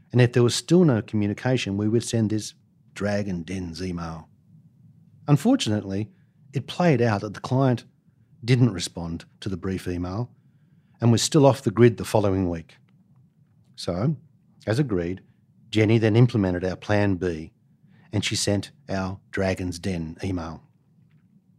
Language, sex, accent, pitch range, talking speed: English, male, Australian, 100-150 Hz, 145 wpm